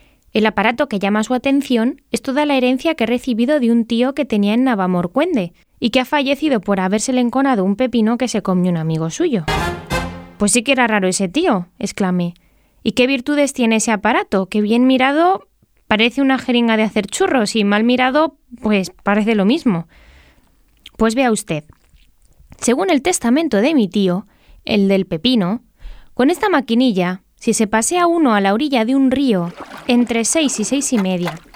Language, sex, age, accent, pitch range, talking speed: Spanish, female, 20-39, Spanish, 200-270 Hz, 185 wpm